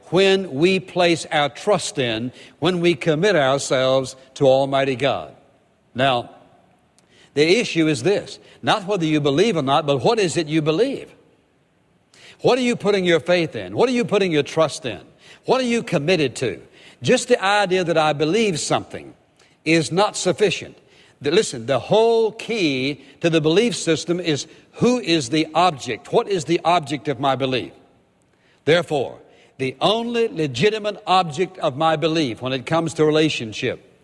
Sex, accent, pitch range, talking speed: male, American, 140-185 Hz, 160 wpm